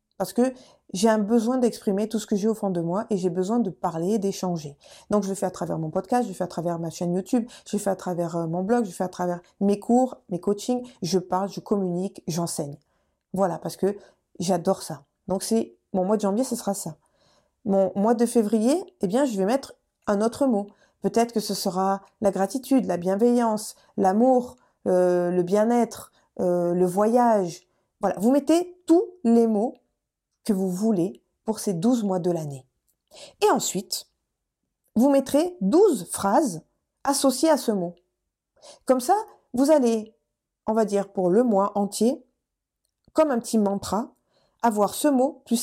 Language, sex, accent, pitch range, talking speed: French, female, French, 185-240 Hz, 185 wpm